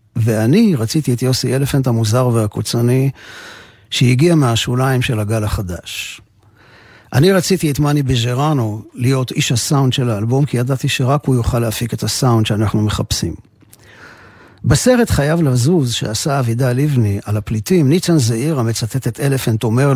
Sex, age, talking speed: male, 50-69, 140 wpm